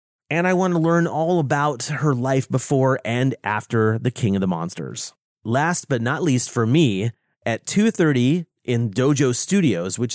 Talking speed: 170 wpm